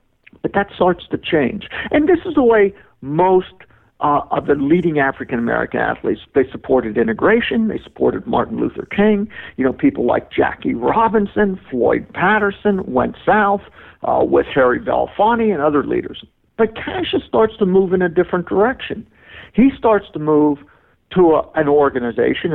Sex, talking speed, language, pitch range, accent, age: male, 150 wpm, English, 140-210 Hz, American, 50-69